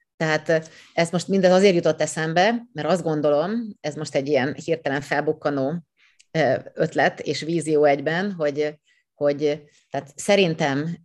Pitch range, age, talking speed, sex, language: 130-155 Hz, 30-49, 130 wpm, female, Hungarian